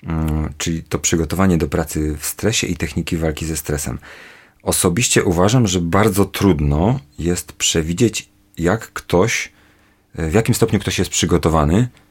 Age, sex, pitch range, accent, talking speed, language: 40-59, male, 80-95 Hz, native, 140 wpm, Polish